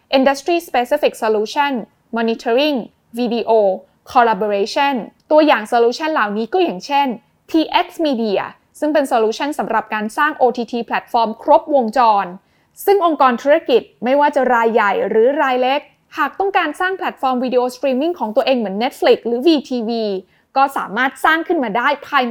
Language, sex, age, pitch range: Thai, female, 20-39, 230-295 Hz